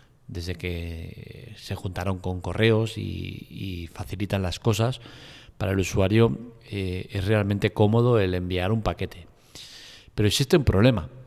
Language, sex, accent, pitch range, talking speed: Spanish, male, Spanish, 95-125 Hz, 140 wpm